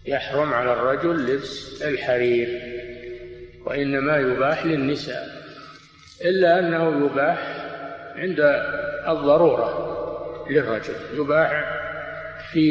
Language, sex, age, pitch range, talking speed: Arabic, male, 50-69, 130-155 Hz, 75 wpm